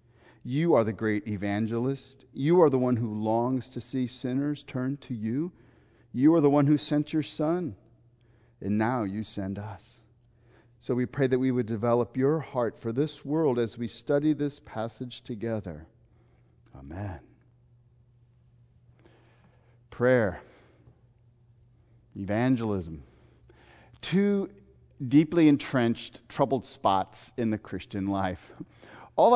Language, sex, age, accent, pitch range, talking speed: English, male, 40-59, American, 110-130 Hz, 125 wpm